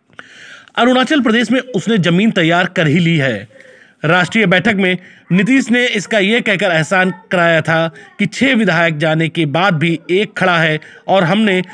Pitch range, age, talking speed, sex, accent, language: 170-210 Hz, 40-59, 155 wpm, male, native, Hindi